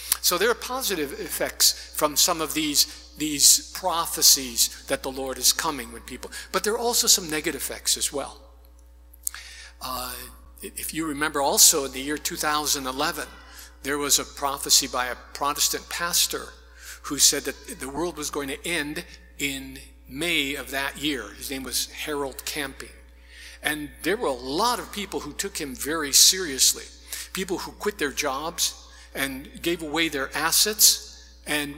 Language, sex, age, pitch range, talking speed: English, male, 50-69, 120-170 Hz, 160 wpm